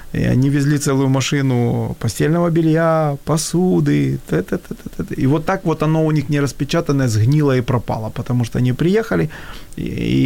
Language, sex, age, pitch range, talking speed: Ukrainian, male, 30-49, 115-140 Hz, 150 wpm